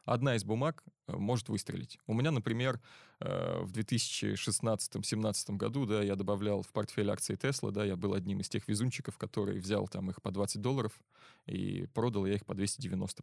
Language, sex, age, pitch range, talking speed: Russian, male, 20-39, 105-130 Hz, 170 wpm